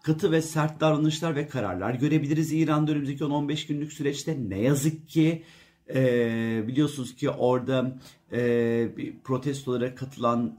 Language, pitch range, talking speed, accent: Turkish, 125-160 Hz, 125 wpm, native